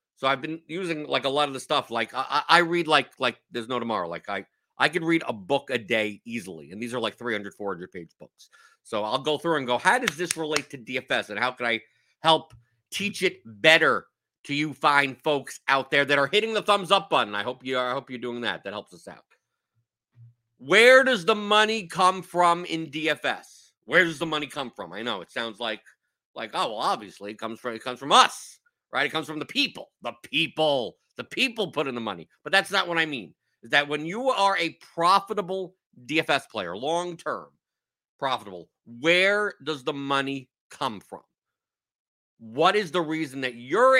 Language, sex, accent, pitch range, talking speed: English, male, American, 125-185 Hz, 215 wpm